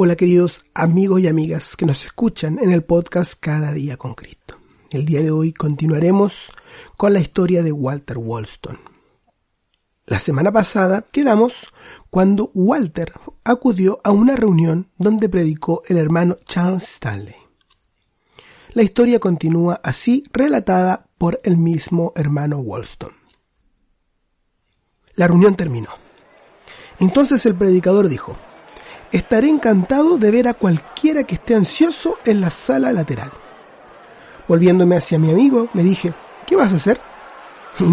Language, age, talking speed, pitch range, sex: Spanish, 30-49, 130 wpm, 165-220 Hz, male